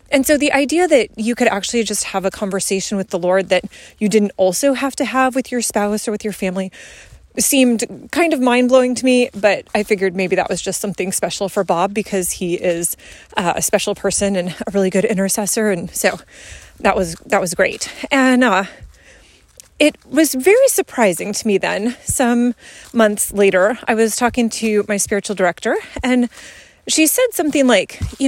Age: 30-49